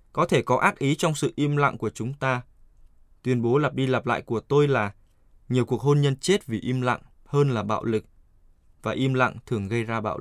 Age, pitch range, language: 20-39, 105-135 Hz, Vietnamese